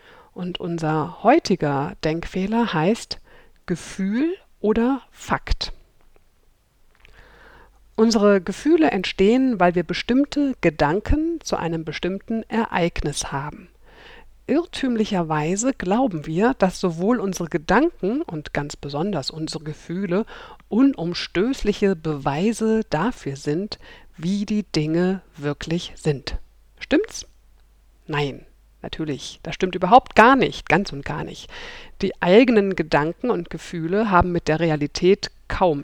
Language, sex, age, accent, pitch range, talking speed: German, female, 50-69, German, 160-220 Hz, 105 wpm